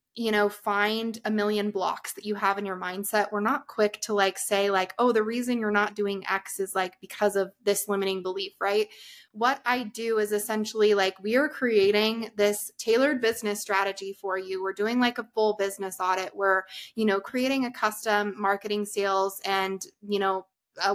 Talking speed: 195 wpm